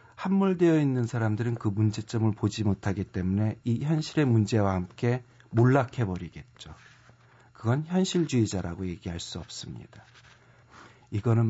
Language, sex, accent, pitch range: Korean, male, native, 110-140 Hz